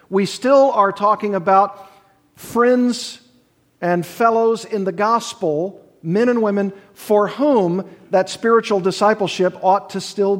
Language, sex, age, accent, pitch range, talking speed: English, male, 50-69, American, 180-220 Hz, 125 wpm